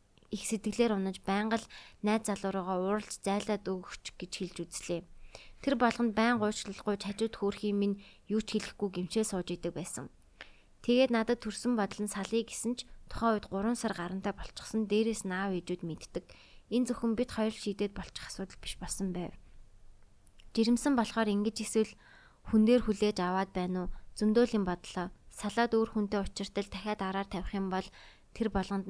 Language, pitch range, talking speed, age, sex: English, 190-225 Hz, 85 wpm, 20-39, female